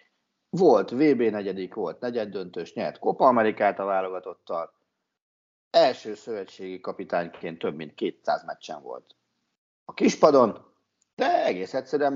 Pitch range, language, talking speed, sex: 105-160 Hz, Hungarian, 120 wpm, male